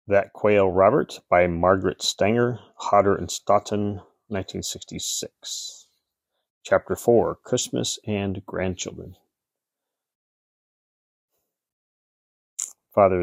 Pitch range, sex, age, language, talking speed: 90-105 Hz, male, 30-49, English, 75 wpm